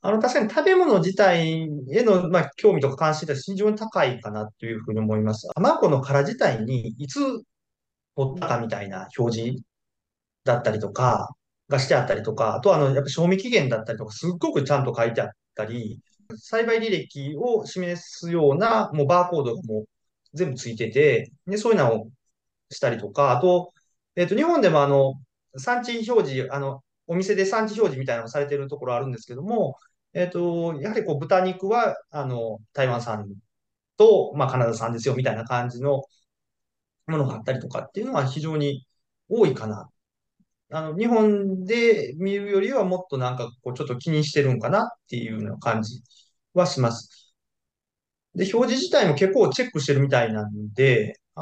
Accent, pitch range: native, 125-190 Hz